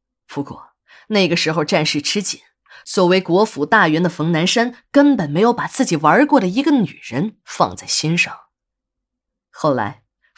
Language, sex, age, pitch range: Chinese, female, 20-39, 155-210 Hz